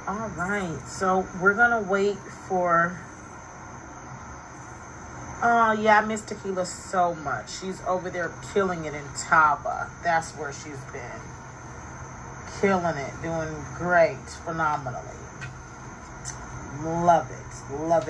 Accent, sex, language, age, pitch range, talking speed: American, female, English, 30-49, 160-205 Hz, 115 wpm